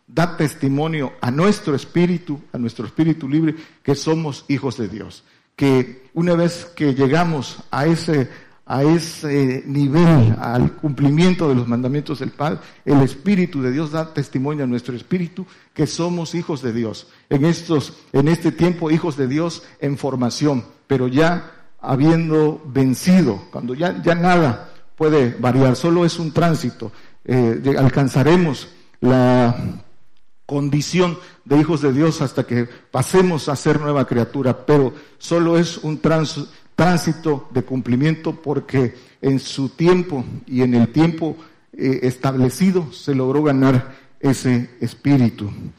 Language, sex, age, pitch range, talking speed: Spanish, male, 50-69, 130-165 Hz, 140 wpm